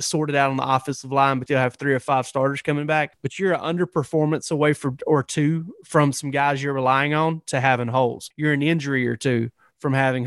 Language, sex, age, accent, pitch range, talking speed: English, male, 30-49, American, 135-160 Hz, 235 wpm